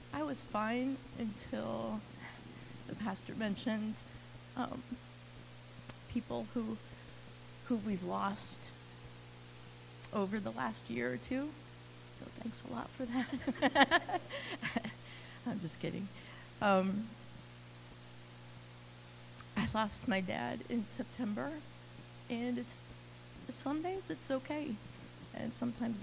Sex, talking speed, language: female, 95 wpm, English